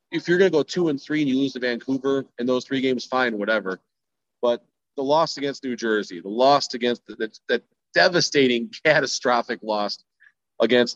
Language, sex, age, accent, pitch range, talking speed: English, male, 40-59, American, 120-150 Hz, 180 wpm